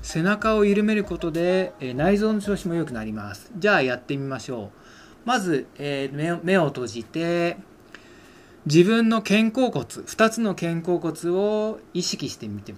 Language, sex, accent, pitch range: Japanese, male, native, 150-205 Hz